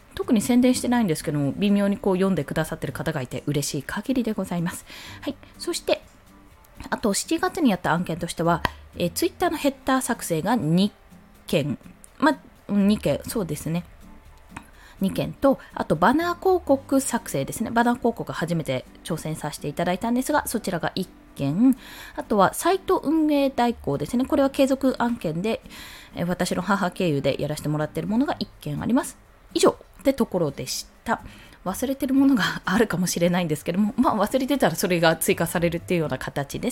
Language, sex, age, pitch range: Japanese, female, 20-39, 165-265 Hz